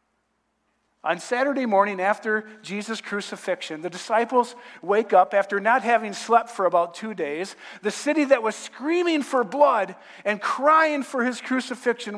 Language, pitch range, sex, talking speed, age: English, 190-275 Hz, male, 150 wpm, 50-69